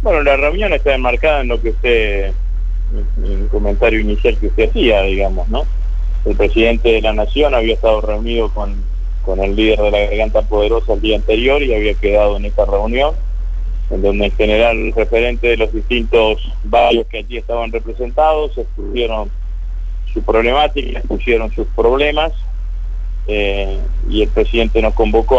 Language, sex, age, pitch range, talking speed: Spanish, male, 30-49, 95-115 Hz, 165 wpm